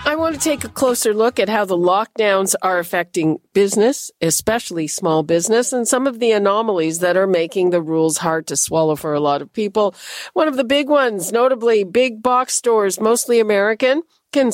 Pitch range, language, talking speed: 170-230 Hz, English, 195 wpm